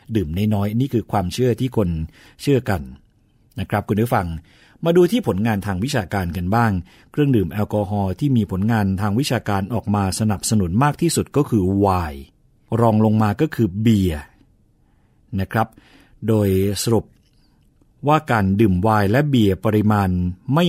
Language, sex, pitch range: Thai, male, 100-125 Hz